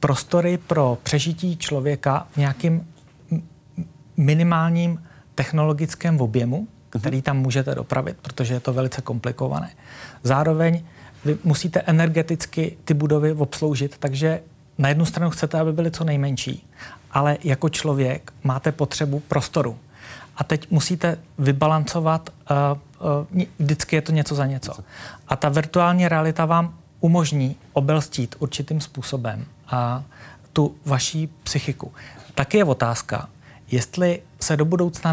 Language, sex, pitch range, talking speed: Czech, male, 130-160 Hz, 120 wpm